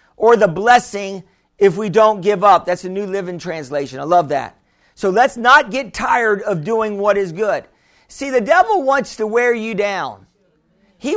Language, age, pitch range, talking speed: English, 50-69, 205-255 Hz, 190 wpm